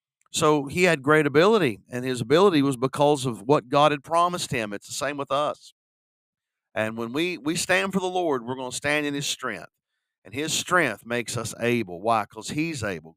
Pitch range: 120-150 Hz